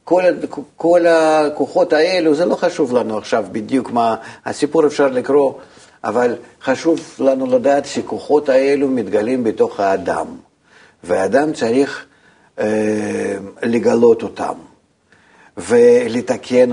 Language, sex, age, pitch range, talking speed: Hebrew, male, 50-69, 120-160 Hz, 105 wpm